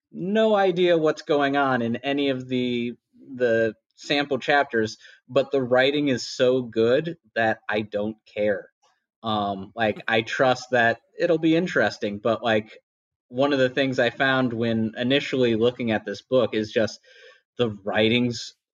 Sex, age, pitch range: male, 30-49, 105-130 Hz